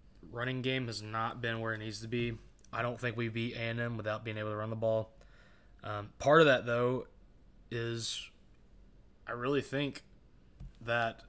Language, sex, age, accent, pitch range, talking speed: English, male, 20-39, American, 105-125 Hz, 175 wpm